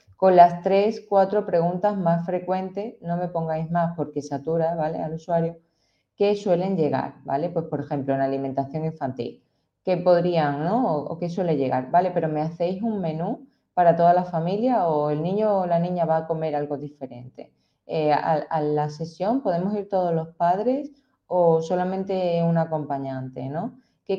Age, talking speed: 20-39, 175 wpm